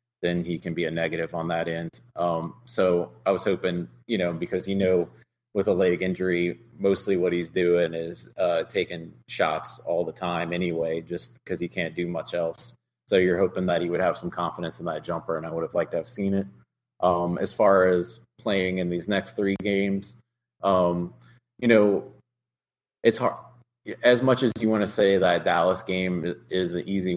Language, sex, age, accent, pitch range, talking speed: English, male, 20-39, American, 85-100 Hz, 200 wpm